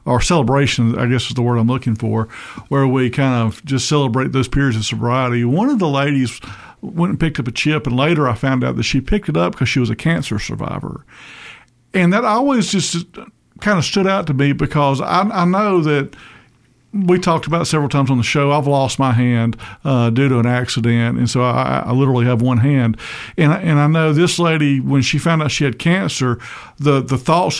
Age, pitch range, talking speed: 50-69, 125-160 Hz, 225 wpm